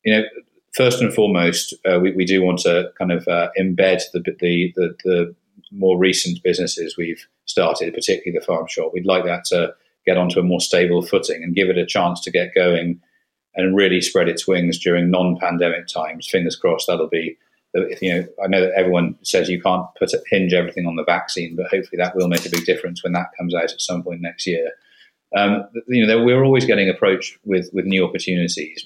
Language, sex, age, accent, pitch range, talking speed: English, male, 40-59, British, 85-110 Hz, 210 wpm